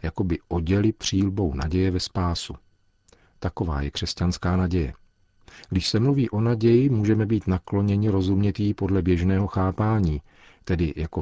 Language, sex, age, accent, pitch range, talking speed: Czech, male, 40-59, native, 85-100 Hz, 135 wpm